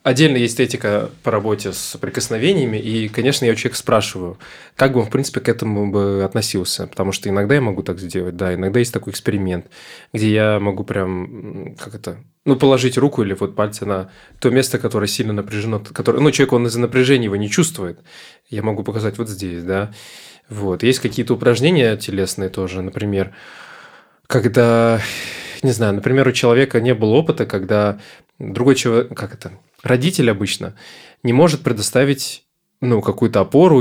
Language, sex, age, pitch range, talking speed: Russian, male, 20-39, 100-130 Hz, 165 wpm